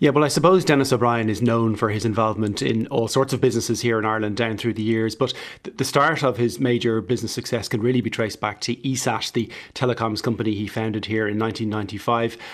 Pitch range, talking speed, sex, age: 110-125 Hz, 220 wpm, male, 30-49